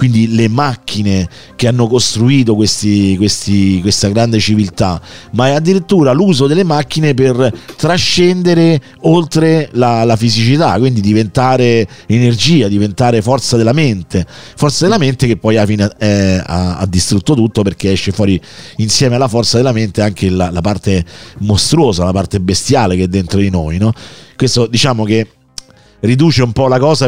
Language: Italian